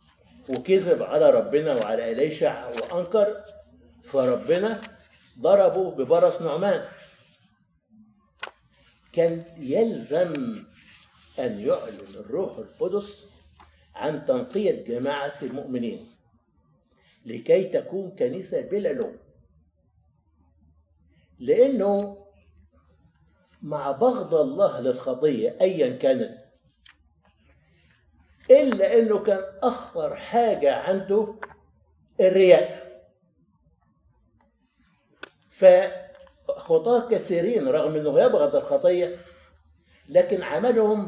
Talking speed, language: 70 wpm, Arabic